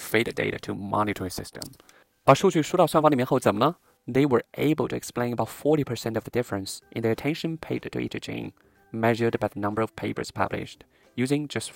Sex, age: male, 20-39